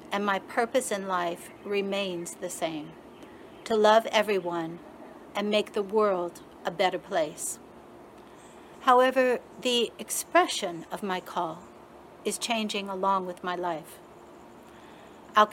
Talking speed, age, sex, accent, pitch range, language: 120 wpm, 60-79, female, American, 185-225 Hz, English